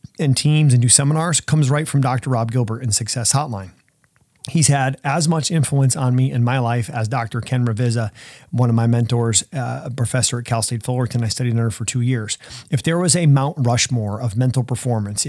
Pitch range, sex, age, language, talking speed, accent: 110-130 Hz, male, 30-49, English, 210 wpm, American